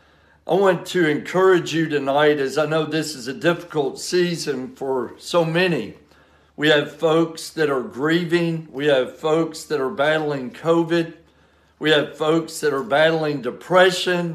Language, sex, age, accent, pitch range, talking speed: English, male, 60-79, American, 140-165 Hz, 155 wpm